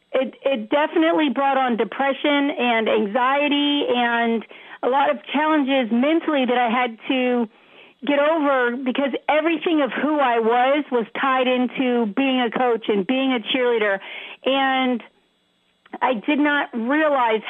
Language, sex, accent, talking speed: English, female, American, 140 wpm